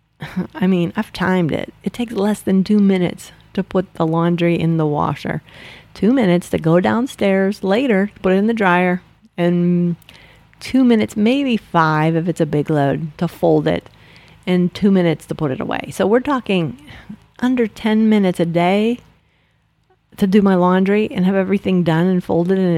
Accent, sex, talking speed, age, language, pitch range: American, female, 180 wpm, 40-59, English, 165-205 Hz